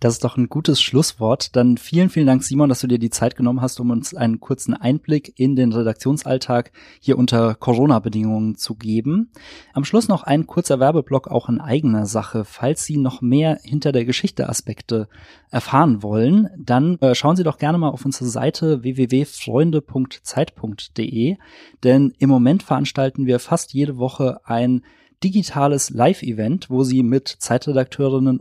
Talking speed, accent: 160 wpm, German